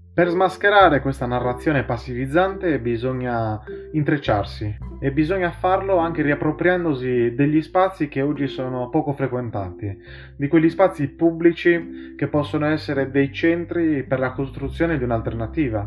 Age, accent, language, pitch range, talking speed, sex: 20-39, native, Italian, 115-155 Hz, 125 wpm, male